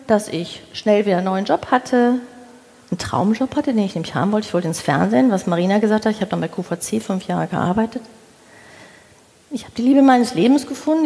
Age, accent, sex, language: 40-59, German, female, German